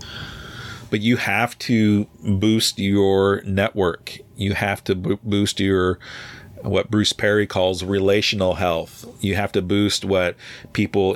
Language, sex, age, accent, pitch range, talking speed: English, male, 40-59, American, 95-110 Hz, 125 wpm